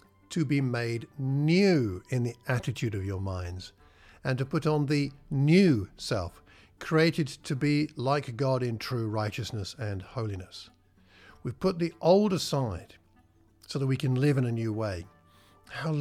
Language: English